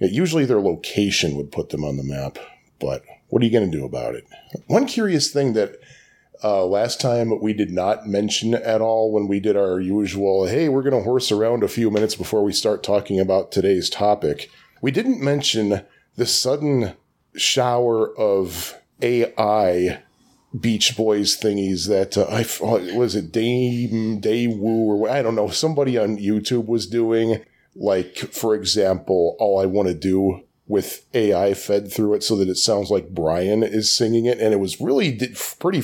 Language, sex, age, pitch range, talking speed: English, male, 40-59, 100-120 Hz, 180 wpm